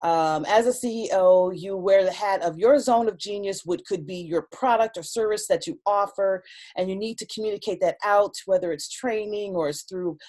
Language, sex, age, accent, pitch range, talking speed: English, female, 40-59, American, 170-220 Hz, 210 wpm